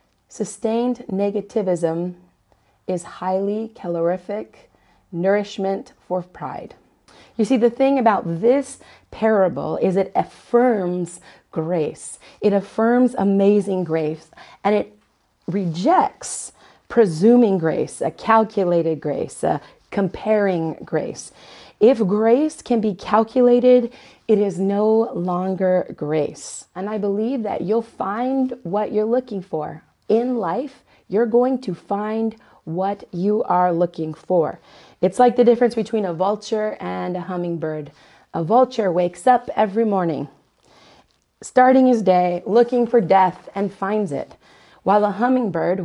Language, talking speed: English, 120 wpm